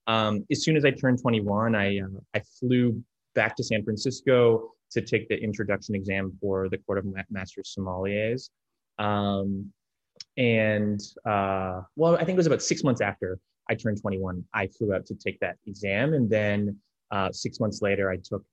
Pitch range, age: 95-110 Hz, 20-39